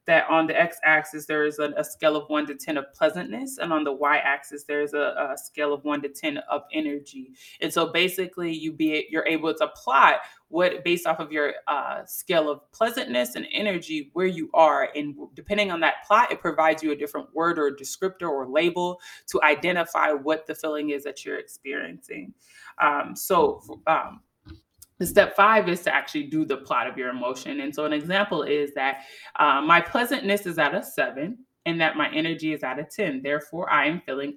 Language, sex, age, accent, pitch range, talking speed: English, female, 20-39, American, 155-205 Hz, 205 wpm